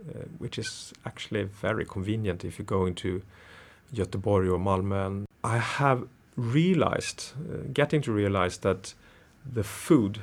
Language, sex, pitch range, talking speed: Swedish, male, 95-115 Hz, 135 wpm